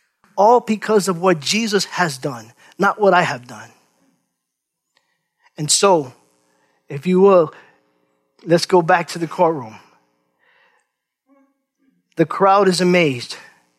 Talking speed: 120 wpm